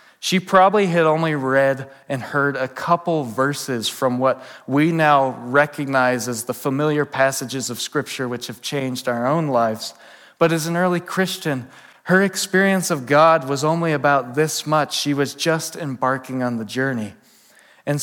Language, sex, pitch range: English, male, 120-150 Hz